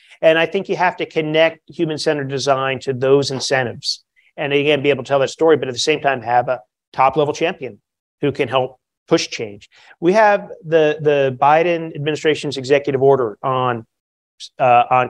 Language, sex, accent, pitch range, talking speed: English, male, American, 135-160 Hz, 180 wpm